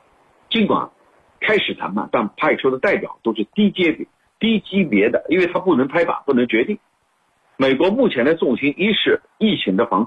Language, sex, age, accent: Chinese, male, 50-69, native